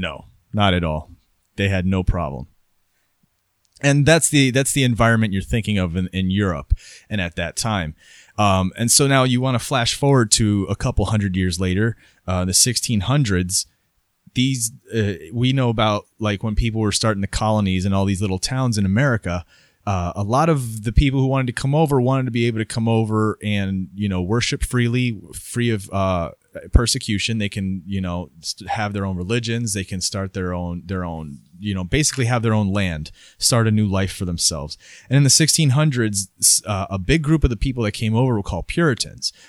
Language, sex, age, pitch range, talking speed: English, male, 30-49, 95-120 Hz, 200 wpm